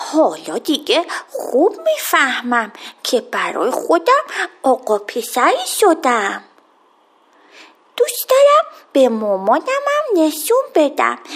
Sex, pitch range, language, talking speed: female, 275-375 Hz, Persian, 85 wpm